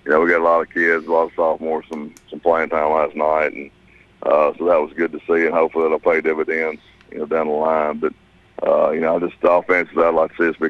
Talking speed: 280 wpm